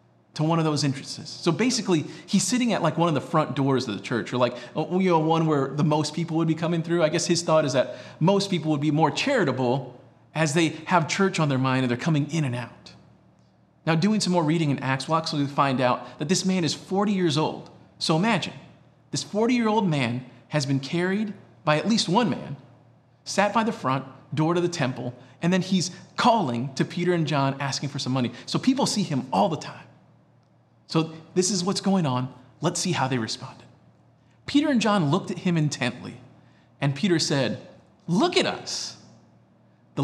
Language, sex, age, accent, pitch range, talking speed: English, male, 40-59, American, 130-180 Hz, 205 wpm